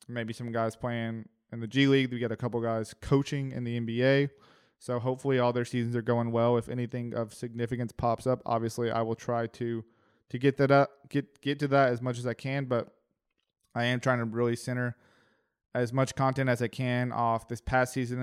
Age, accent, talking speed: 20-39, American, 215 wpm